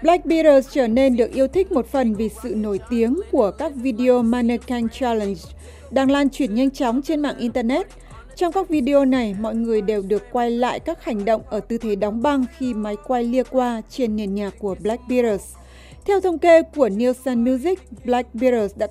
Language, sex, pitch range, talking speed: Vietnamese, female, 220-290 Hz, 200 wpm